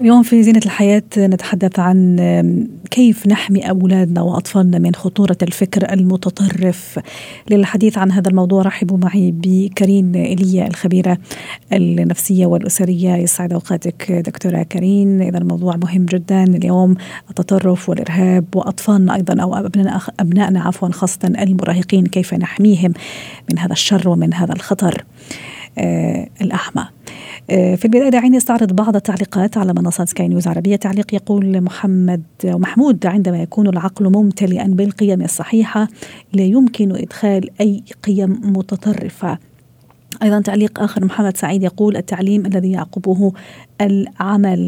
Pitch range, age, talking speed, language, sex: 180-200 Hz, 40-59, 120 wpm, Arabic, female